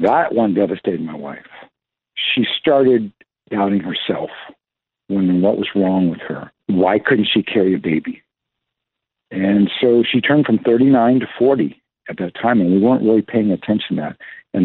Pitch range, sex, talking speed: 95-115 Hz, male, 170 wpm